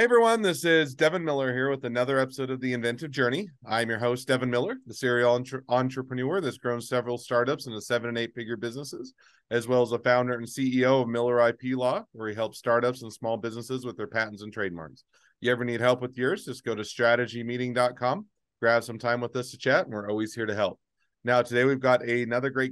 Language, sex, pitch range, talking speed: English, male, 110-125 Hz, 220 wpm